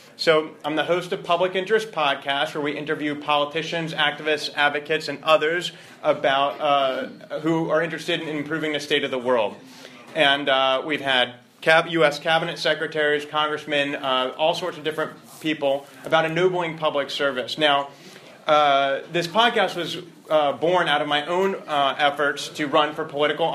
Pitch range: 145-175 Hz